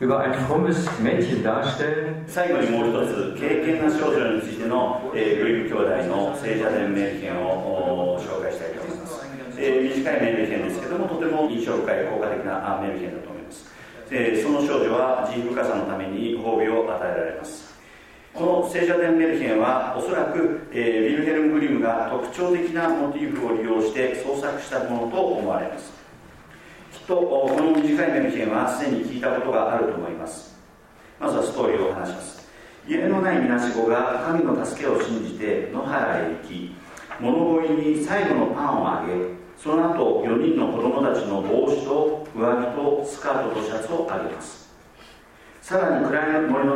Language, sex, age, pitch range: Japanese, male, 40-59, 115-160 Hz